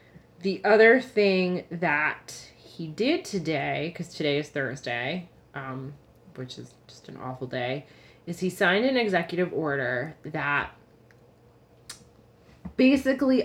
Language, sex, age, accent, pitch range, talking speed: English, female, 20-39, American, 150-185 Hz, 115 wpm